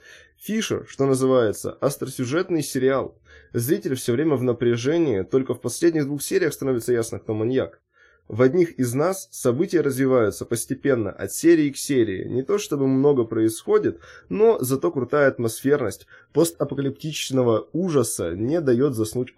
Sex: male